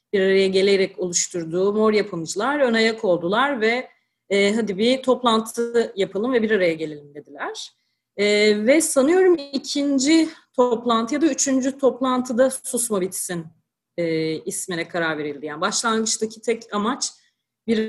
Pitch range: 185-245 Hz